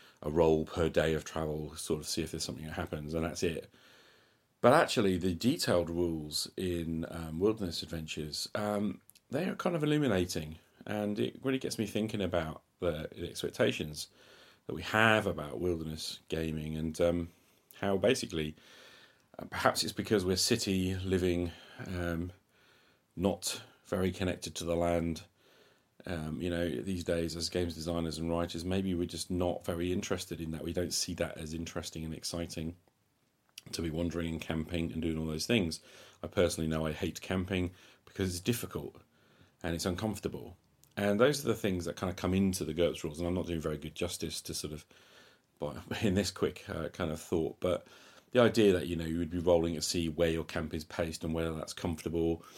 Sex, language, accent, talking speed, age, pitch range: male, English, British, 185 wpm, 40-59, 80-95 Hz